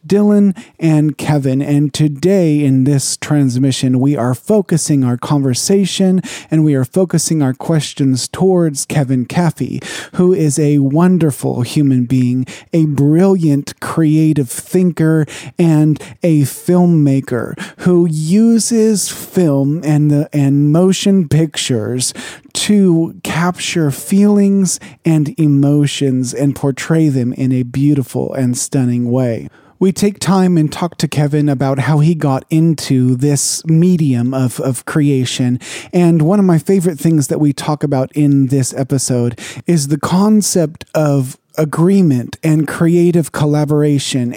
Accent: American